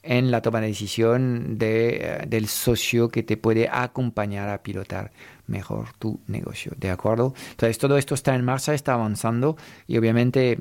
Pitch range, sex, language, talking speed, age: 110-125 Hz, male, Spanish, 165 wpm, 50-69